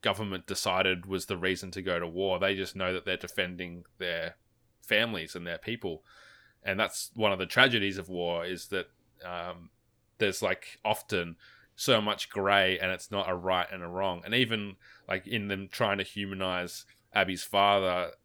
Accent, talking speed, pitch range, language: Australian, 180 wpm, 95-115 Hz, English